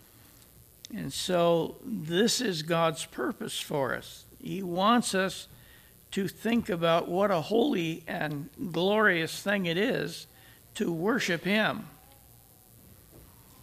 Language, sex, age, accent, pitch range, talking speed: English, male, 60-79, American, 150-190 Hz, 110 wpm